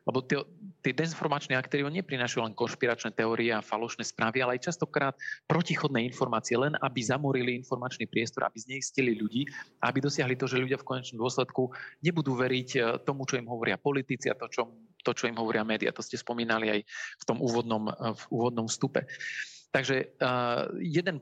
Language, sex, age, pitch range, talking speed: Slovak, male, 40-59, 120-140 Hz, 165 wpm